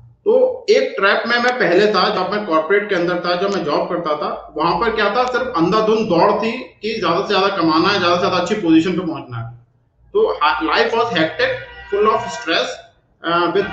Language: English